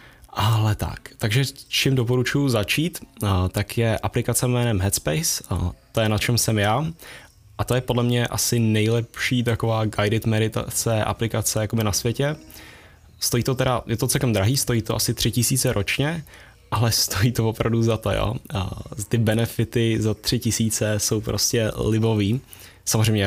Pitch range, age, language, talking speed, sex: 100-115 Hz, 20-39, Czech, 150 wpm, male